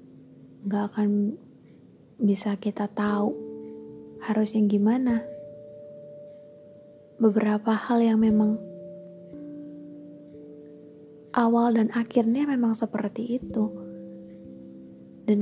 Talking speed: 75 wpm